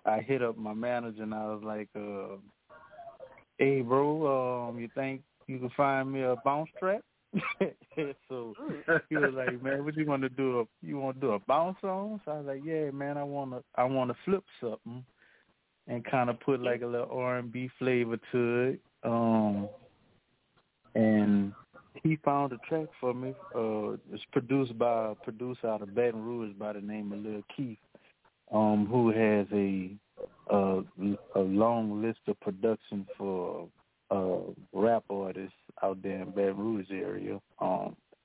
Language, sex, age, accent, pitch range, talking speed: English, male, 30-49, American, 105-130 Hz, 170 wpm